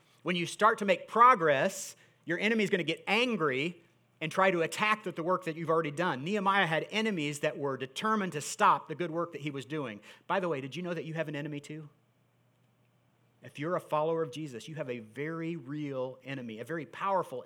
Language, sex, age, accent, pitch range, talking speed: English, male, 40-59, American, 130-165 Hz, 225 wpm